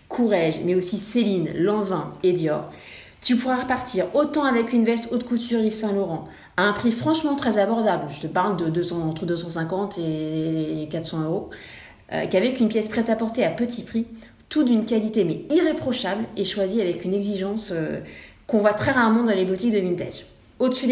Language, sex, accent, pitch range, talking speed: French, female, French, 175-230 Hz, 190 wpm